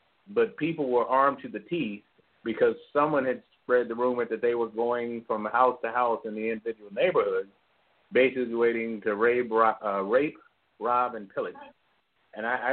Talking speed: 170 wpm